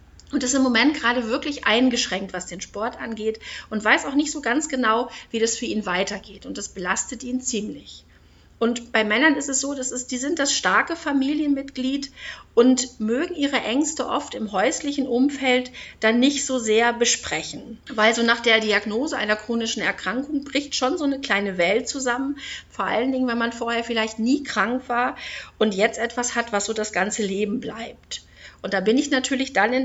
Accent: German